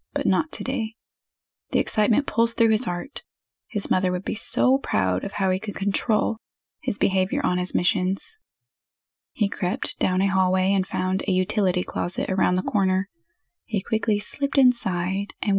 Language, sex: English, female